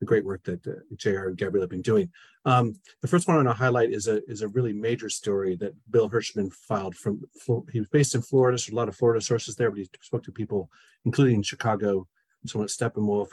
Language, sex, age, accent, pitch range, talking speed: English, male, 40-59, American, 100-125 Hz, 240 wpm